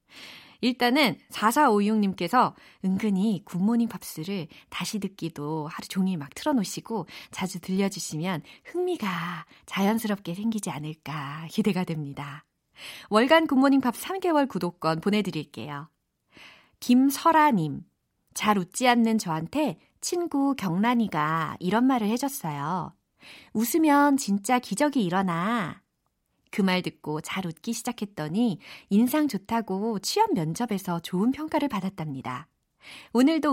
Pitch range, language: 170-250 Hz, Korean